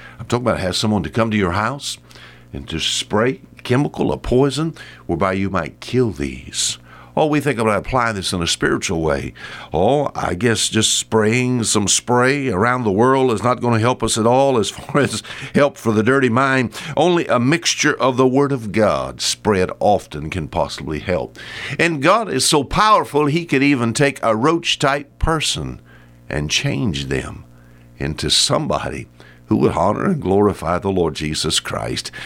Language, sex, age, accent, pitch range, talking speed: English, male, 60-79, American, 90-130 Hz, 180 wpm